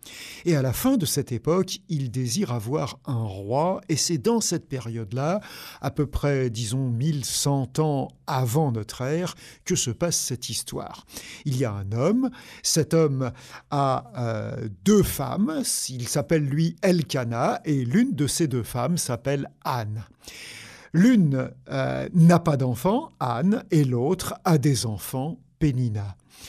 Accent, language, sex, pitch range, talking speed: French, French, male, 130-170 Hz, 150 wpm